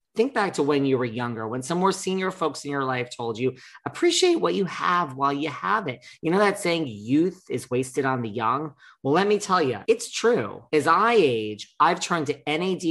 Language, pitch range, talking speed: English, 125-175 Hz, 230 wpm